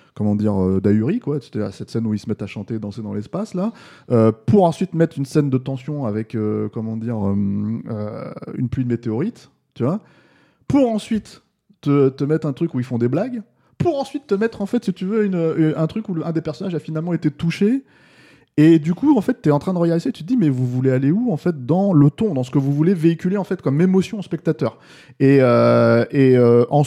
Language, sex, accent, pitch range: French, male, French, 115-170 Hz